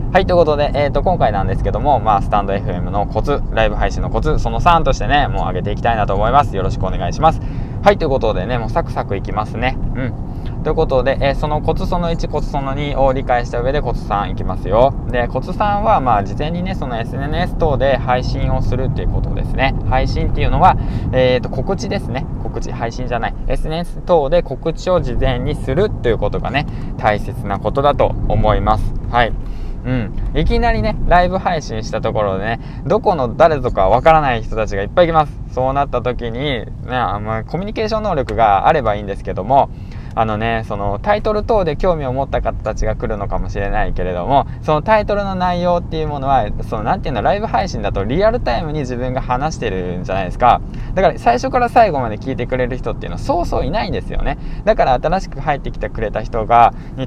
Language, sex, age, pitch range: Japanese, male, 20-39, 110-150 Hz